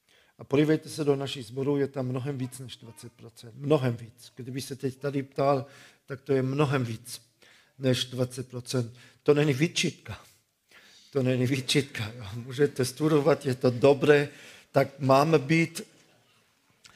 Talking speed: 145 wpm